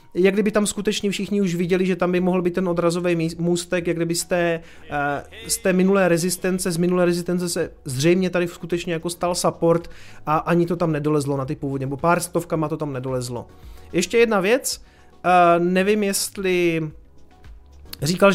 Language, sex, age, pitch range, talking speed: Czech, male, 30-49, 150-185 Hz, 175 wpm